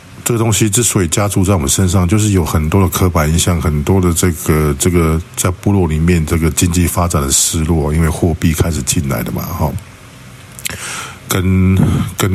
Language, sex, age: Chinese, male, 50-69